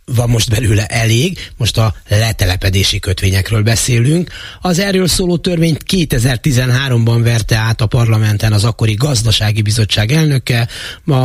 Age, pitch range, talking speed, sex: 30-49, 95-125 Hz, 130 wpm, male